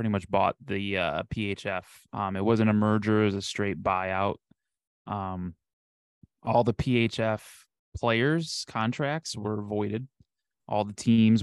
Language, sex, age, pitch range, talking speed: English, male, 20-39, 100-120 Hz, 140 wpm